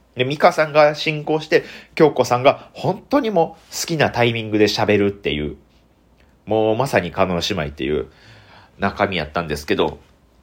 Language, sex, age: Japanese, male, 40-59